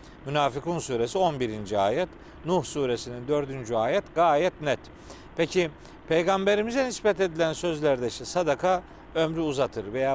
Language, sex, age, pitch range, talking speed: Turkish, male, 50-69, 135-190 Hz, 120 wpm